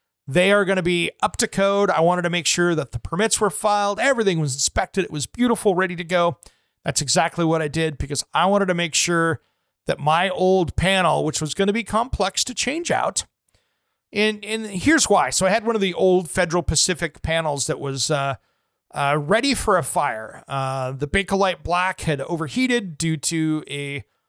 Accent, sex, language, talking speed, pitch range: American, male, English, 205 wpm, 155-200 Hz